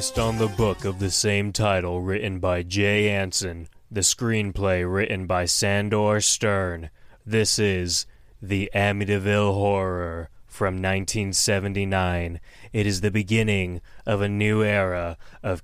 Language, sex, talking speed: English, male, 125 wpm